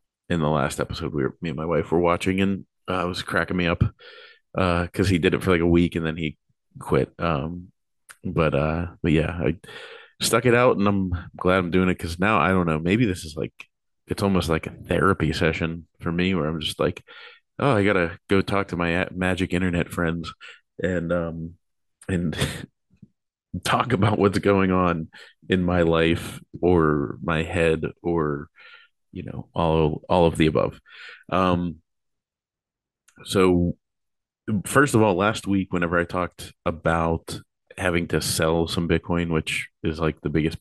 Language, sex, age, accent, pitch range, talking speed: English, male, 30-49, American, 80-95 Hz, 180 wpm